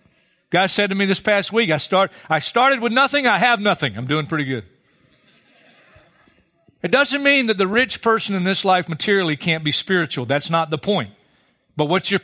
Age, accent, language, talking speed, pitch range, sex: 50-69, American, English, 205 wpm, 150-205 Hz, male